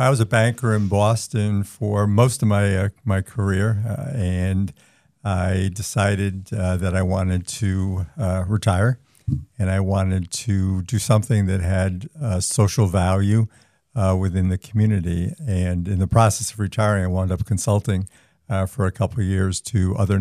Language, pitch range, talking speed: English, 95-110 Hz, 170 wpm